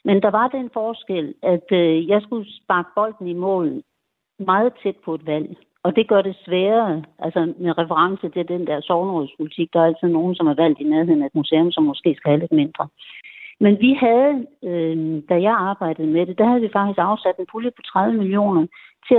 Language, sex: Danish, female